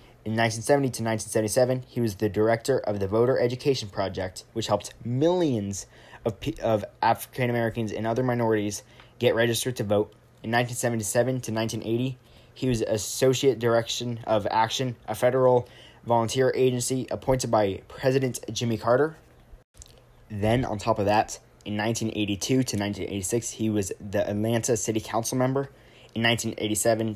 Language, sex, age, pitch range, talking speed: English, male, 20-39, 110-120 Hz, 140 wpm